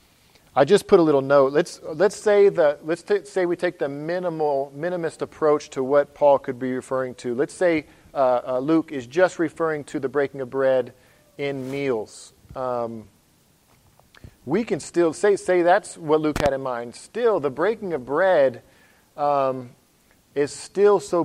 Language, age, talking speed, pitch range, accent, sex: English, 40-59, 175 wpm, 135-165 Hz, American, male